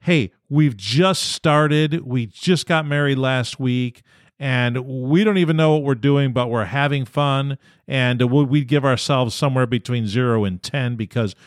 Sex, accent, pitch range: male, American, 115-160 Hz